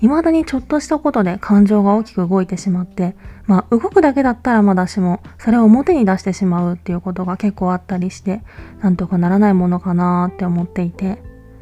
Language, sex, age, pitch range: Japanese, female, 20-39, 175-220 Hz